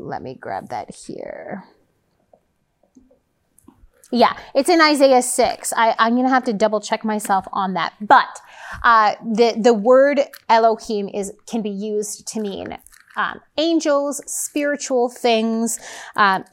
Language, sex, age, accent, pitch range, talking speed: English, female, 30-49, American, 200-255 Hz, 140 wpm